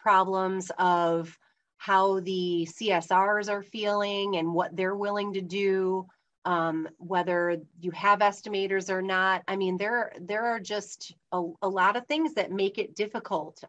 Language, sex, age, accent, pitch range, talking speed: English, female, 30-49, American, 180-215 Hz, 155 wpm